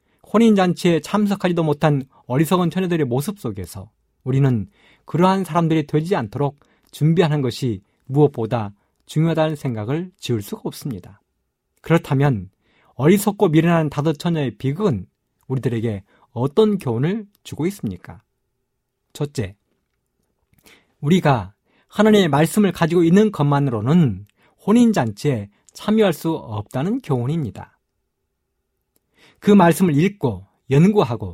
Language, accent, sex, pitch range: Korean, native, male, 120-180 Hz